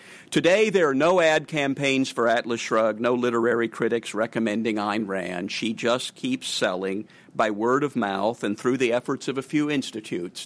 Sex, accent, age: male, American, 50-69